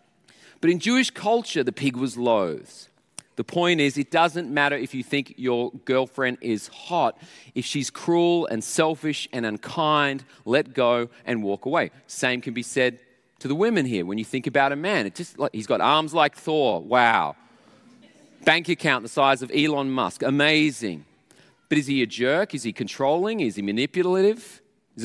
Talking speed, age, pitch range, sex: 180 wpm, 30-49, 130-185 Hz, male